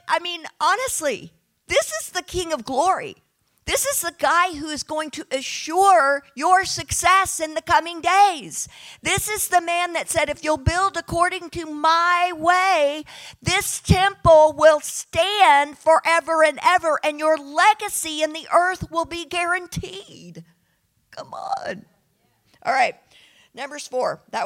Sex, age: female, 50-69